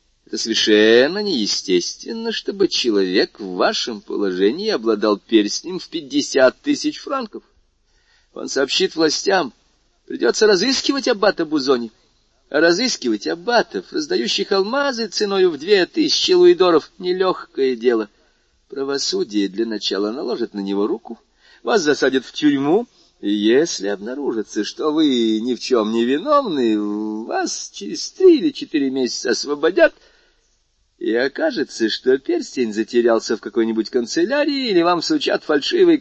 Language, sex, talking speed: Russian, male, 120 wpm